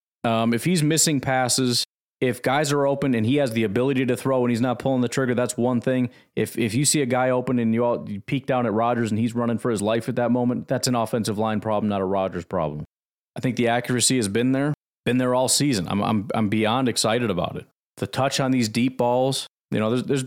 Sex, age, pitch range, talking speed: male, 30-49, 115-130 Hz, 255 wpm